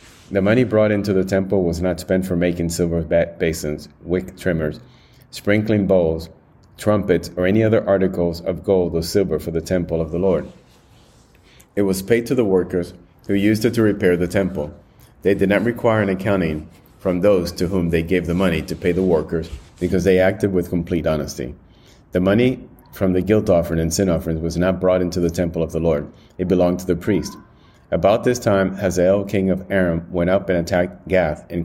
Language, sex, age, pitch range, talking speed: English, male, 30-49, 85-100 Hz, 200 wpm